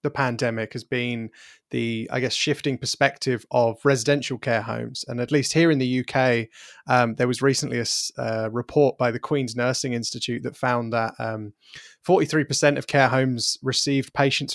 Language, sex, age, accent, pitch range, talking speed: English, male, 20-39, British, 120-135 Hz, 175 wpm